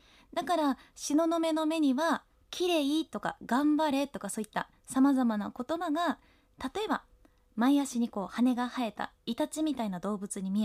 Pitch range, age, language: 220-310 Hz, 20-39, Japanese